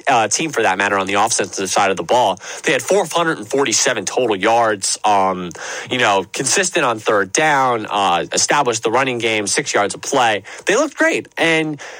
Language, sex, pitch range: English, male, 110-165 Hz